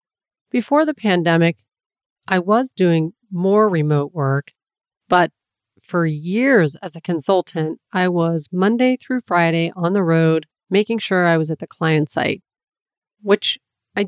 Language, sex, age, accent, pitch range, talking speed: English, female, 40-59, American, 160-200 Hz, 140 wpm